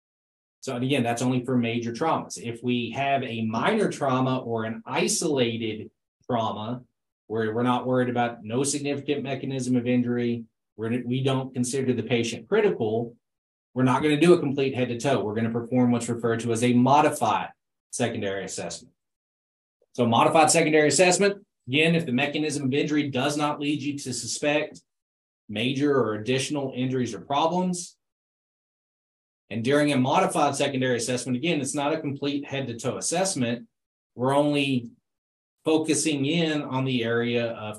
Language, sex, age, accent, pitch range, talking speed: English, male, 20-39, American, 115-145 Hz, 155 wpm